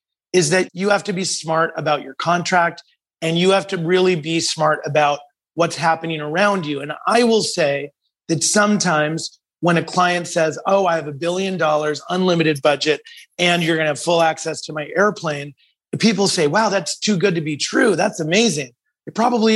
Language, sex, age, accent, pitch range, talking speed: English, male, 30-49, American, 155-185 Hz, 195 wpm